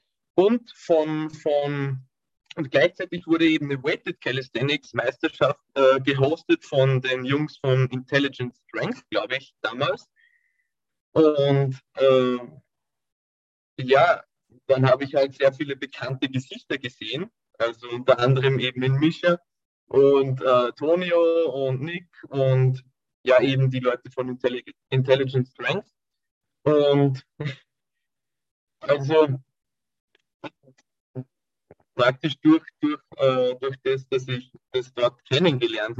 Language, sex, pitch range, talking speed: German, male, 125-145 Hz, 110 wpm